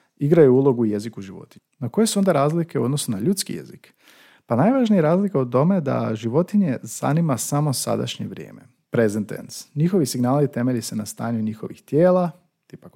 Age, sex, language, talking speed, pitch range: 40-59, male, Croatian, 170 wpm, 110-155 Hz